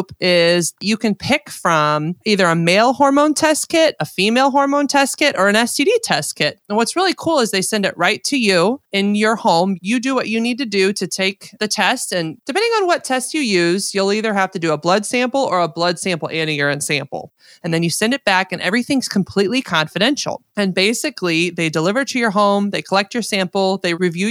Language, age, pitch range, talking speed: English, 30-49, 170-230 Hz, 225 wpm